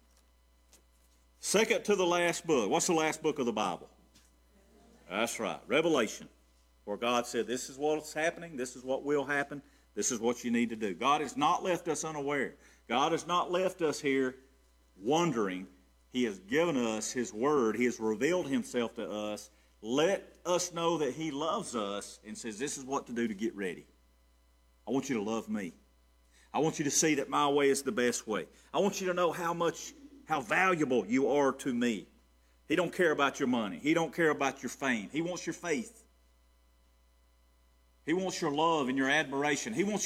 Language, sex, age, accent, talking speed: English, male, 50-69, American, 200 wpm